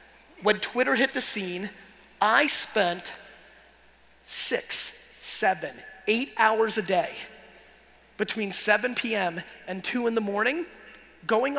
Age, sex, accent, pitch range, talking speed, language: 30-49, male, American, 185-225 Hz, 115 wpm, English